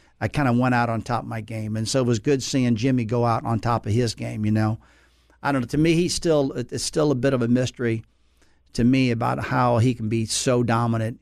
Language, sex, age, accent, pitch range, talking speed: English, male, 50-69, American, 115-130 Hz, 260 wpm